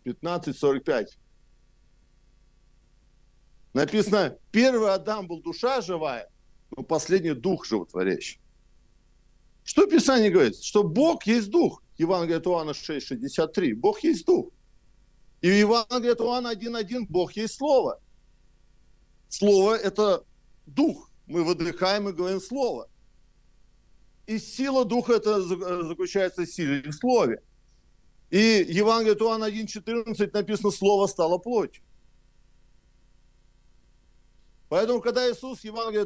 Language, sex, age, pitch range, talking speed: Russian, male, 50-69, 185-235 Hz, 105 wpm